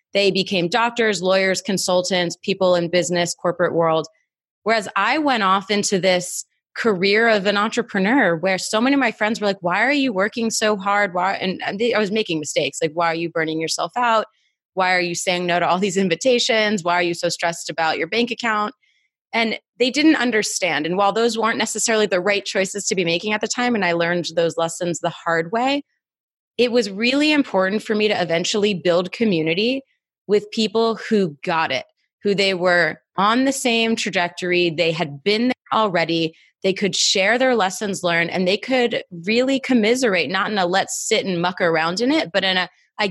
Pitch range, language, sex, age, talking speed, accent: 175-225 Hz, English, female, 20-39, 200 wpm, American